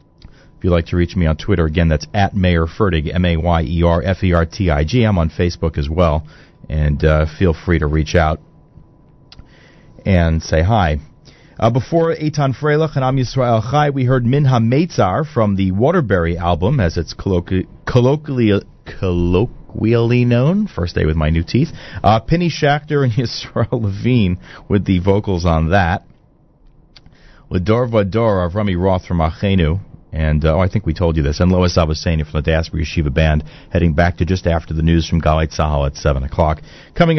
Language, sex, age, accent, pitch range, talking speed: English, male, 40-59, American, 85-120 Hz, 170 wpm